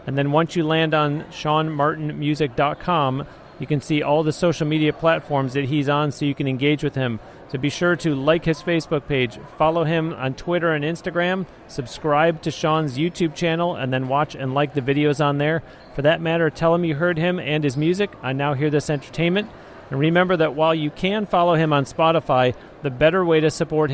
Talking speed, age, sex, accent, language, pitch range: 210 wpm, 40-59, male, American, English, 145-165 Hz